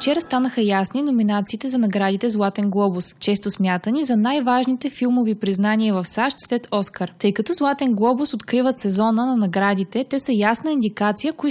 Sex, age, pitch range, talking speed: female, 20-39, 200-250 Hz, 160 wpm